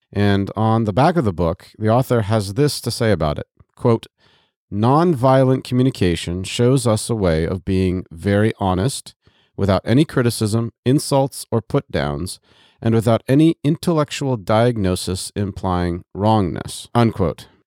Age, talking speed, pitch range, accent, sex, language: 40-59, 140 wpm, 95-120 Hz, American, male, English